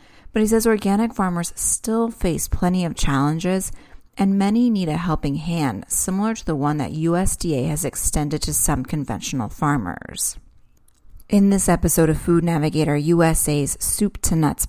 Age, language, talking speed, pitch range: 30-49, English, 155 wpm, 150-190 Hz